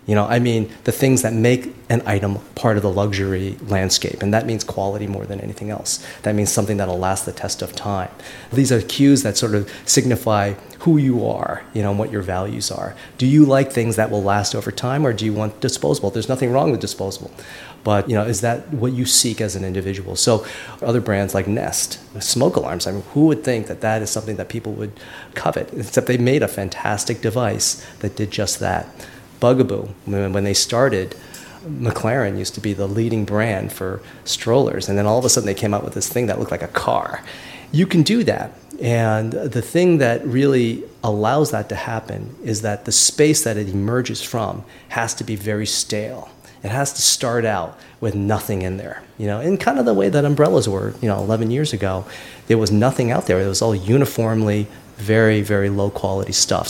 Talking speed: 215 wpm